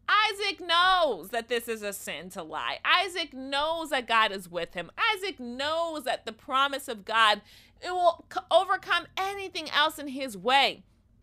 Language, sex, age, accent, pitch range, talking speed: English, female, 30-49, American, 220-320 Hz, 165 wpm